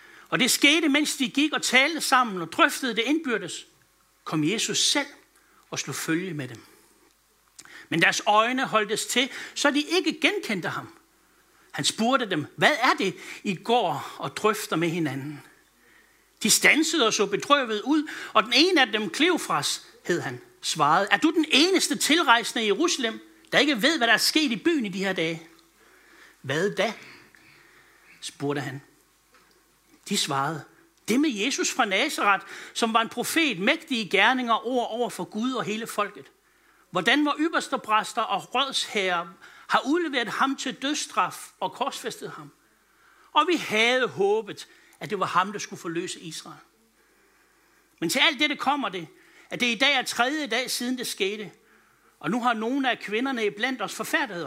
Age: 60-79